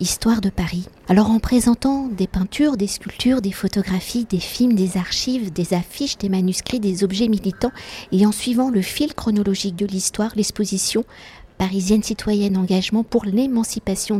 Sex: female